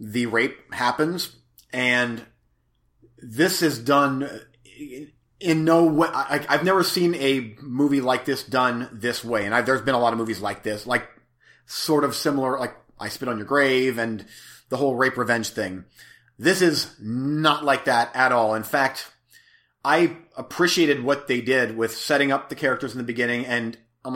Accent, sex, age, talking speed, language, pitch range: American, male, 30-49, 170 wpm, English, 120-155 Hz